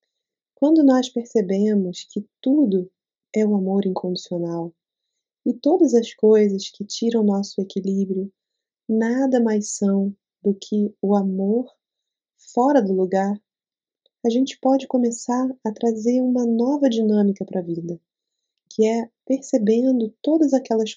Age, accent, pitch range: 20-39, Brazilian, 200-255 Hz